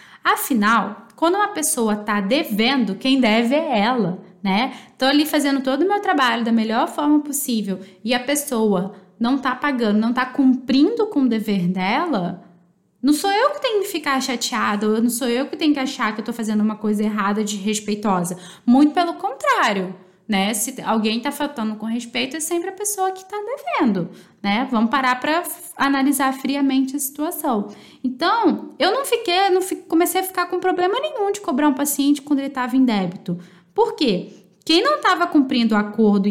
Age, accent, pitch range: 10-29, Brazilian, 215-300 Hz